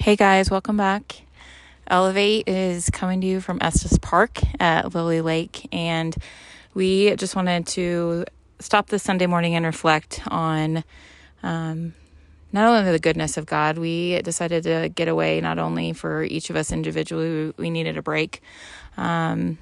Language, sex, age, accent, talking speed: English, female, 20-39, American, 155 wpm